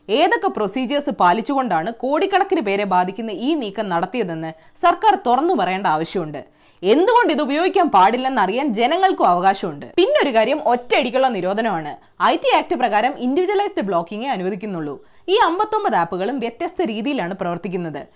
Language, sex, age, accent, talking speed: Malayalam, female, 20-39, native, 110 wpm